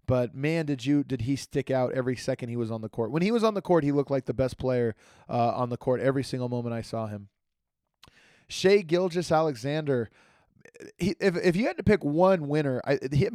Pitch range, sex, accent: 130-170 Hz, male, American